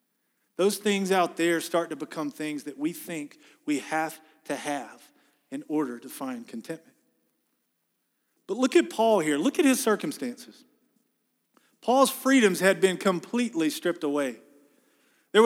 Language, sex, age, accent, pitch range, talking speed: English, male, 40-59, American, 155-235 Hz, 145 wpm